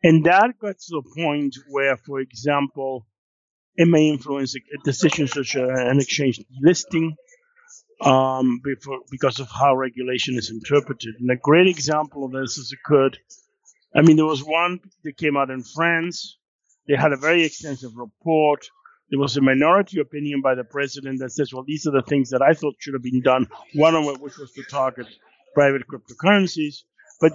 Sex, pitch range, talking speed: male, 140-180 Hz, 180 wpm